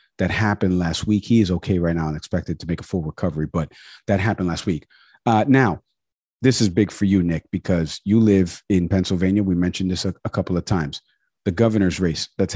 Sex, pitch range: male, 90-115 Hz